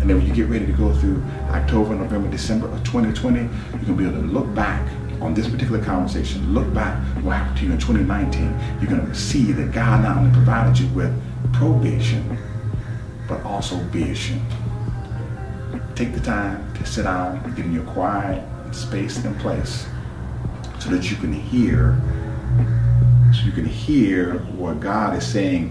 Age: 40-59